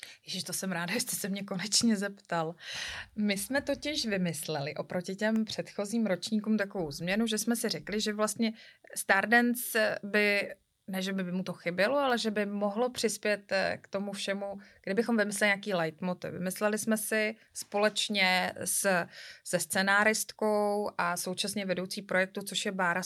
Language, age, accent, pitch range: Czech, 20-39, native, 180-215 Hz